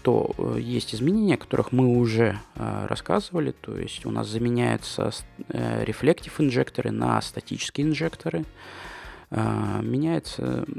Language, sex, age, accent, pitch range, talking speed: Russian, male, 20-39, native, 105-125 Hz, 115 wpm